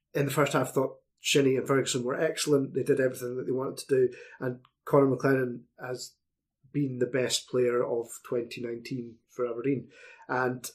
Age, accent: 30-49, British